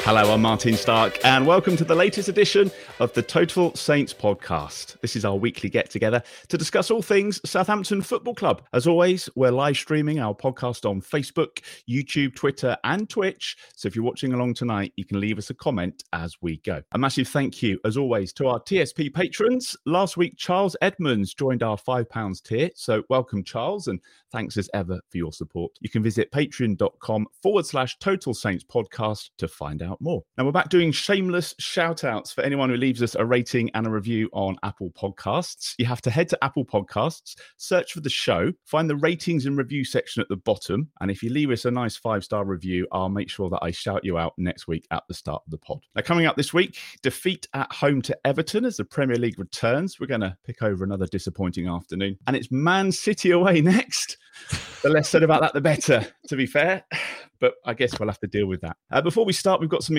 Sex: male